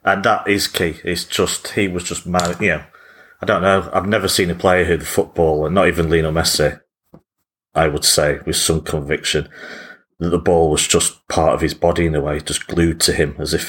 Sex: male